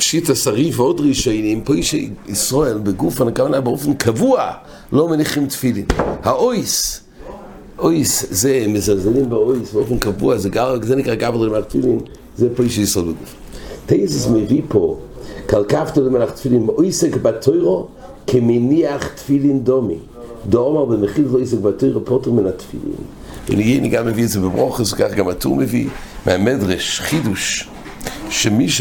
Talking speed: 60 wpm